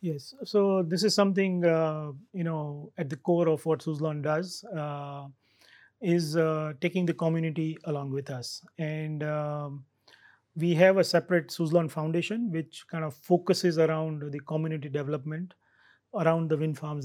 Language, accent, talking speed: English, Indian, 155 wpm